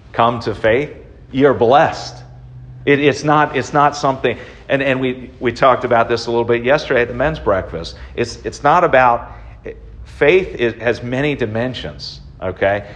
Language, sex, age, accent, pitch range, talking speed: English, male, 40-59, American, 95-130 Hz, 165 wpm